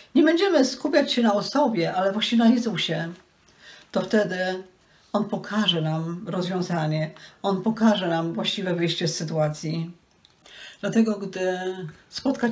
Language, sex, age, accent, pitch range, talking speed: Polish, female, 40-59, native, 175-220 Hz, 125 wpm